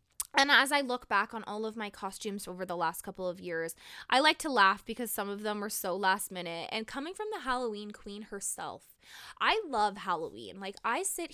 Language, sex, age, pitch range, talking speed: English, female, 20-39, 185-240 Hz, 215 wpm